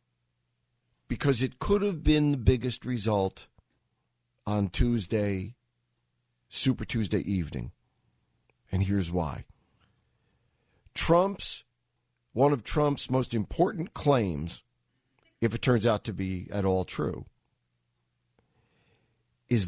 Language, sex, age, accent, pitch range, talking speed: English, male, 50-69, American, 90-135 Hz, 100 wpm